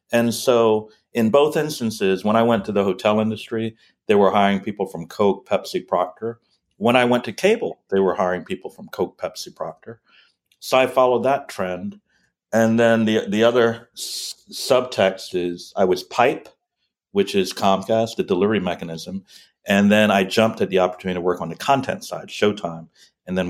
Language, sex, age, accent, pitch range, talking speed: English, male, 60-79, American, 95-115 Hz, 180 wpm